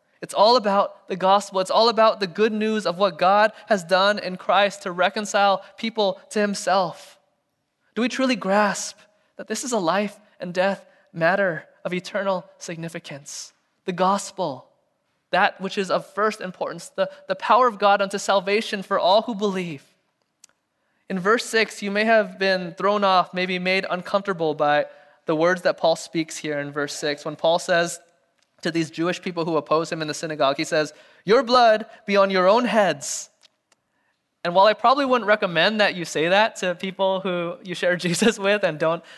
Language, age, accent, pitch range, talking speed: English, 20-39, American, 175-210 Hz, 185 wpm